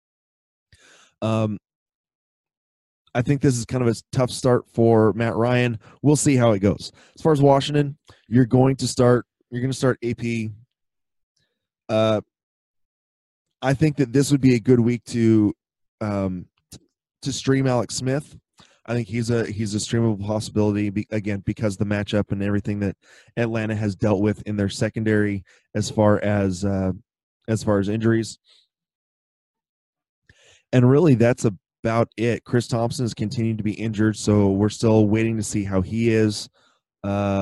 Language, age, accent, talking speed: English, 20-39, American, 155 wpm